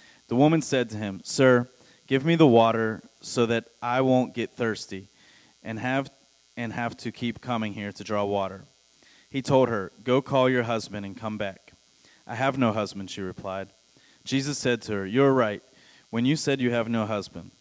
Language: English